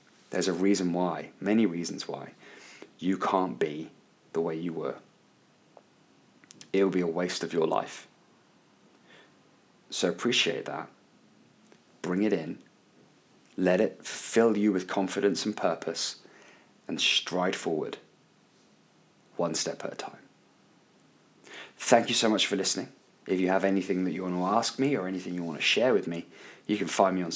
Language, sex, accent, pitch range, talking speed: English, male, British, 90-115 Hz, 160 wpm